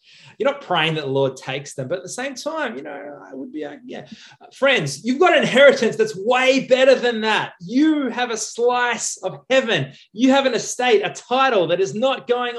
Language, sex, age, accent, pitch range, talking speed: English, male, 20-39, Australian, 145-225 Hz, 220 wpm